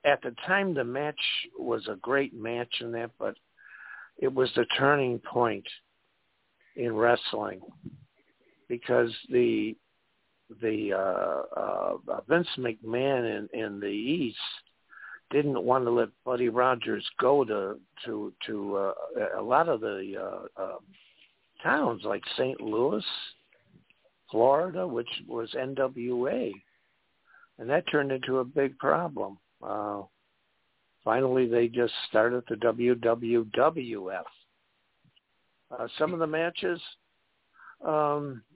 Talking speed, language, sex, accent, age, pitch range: 120 wpm, English, male, American, 60-79, 115-140 Hz